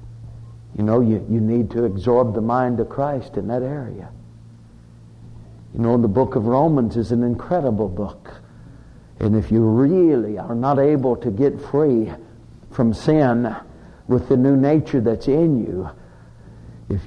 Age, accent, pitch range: 60-79, American, 100-130 Hz